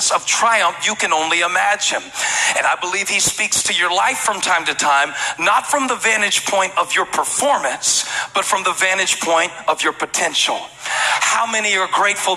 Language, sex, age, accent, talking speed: English, male, 40-59, American, 185 wpm